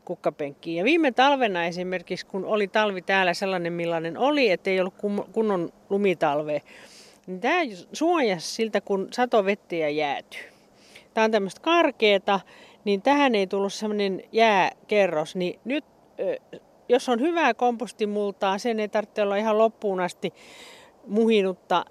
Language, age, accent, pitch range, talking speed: Finnish, 40-59, native, 180-235 Hz, 130 wpm